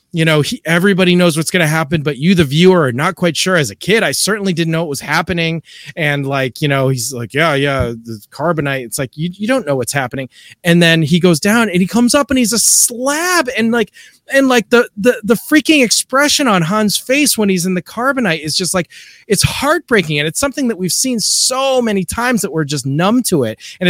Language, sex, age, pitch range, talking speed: English, male, 30-49, 145-200 Hz, 240 wpm